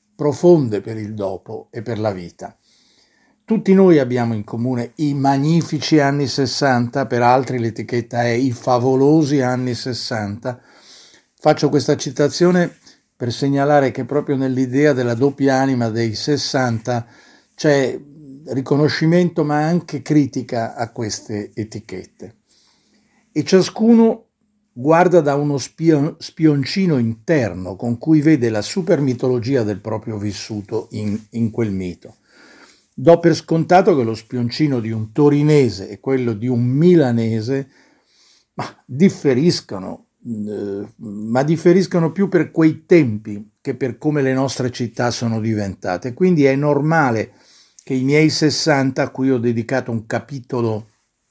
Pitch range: 115-150 Hz